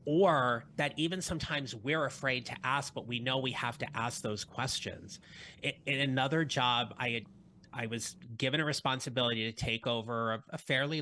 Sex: male